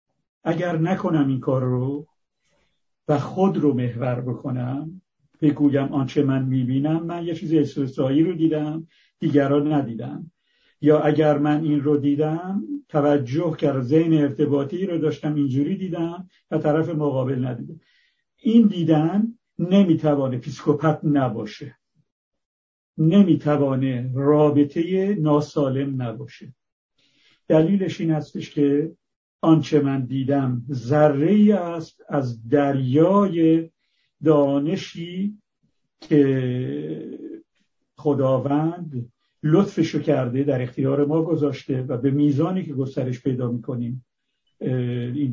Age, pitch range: 50-69, 135-165 Hz